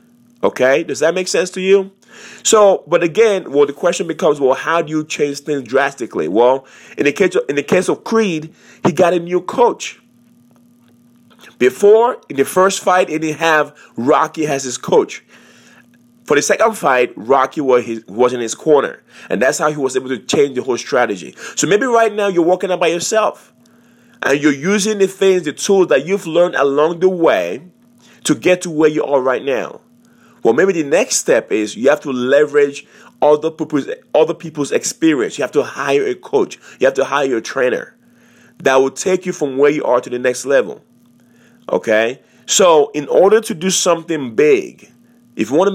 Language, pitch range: English, 140-205 Hz